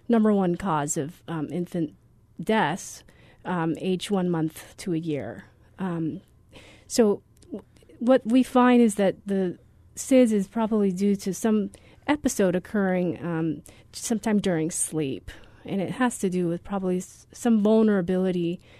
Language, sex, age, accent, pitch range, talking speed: English, female, 40-59, American, 170-210 Hz, 135 wpm